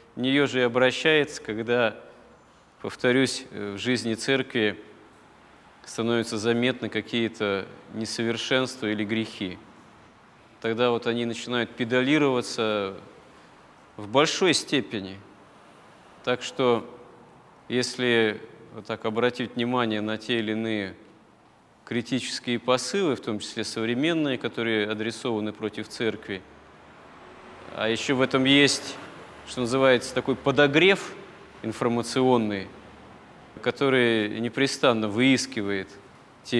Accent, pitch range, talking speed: native, 110-125 Hz, 95 wpm